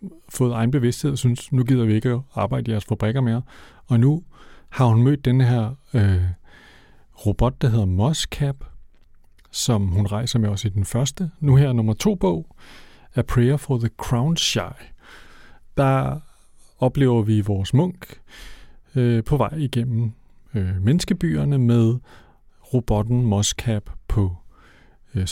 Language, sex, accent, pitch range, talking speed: Danish, male, native, 105-140 Hz, 140 wpm